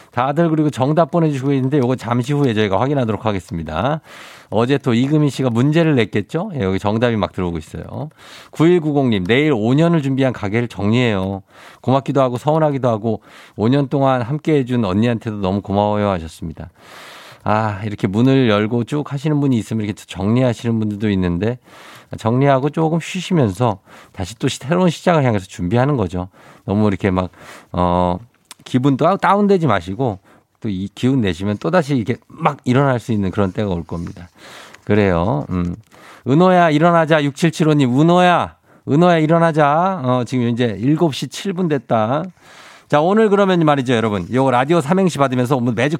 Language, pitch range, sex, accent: Korean, 105-155 Hz, male, native